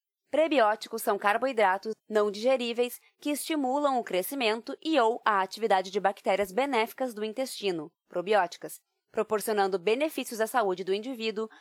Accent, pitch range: Brazilian, 195-245 Hz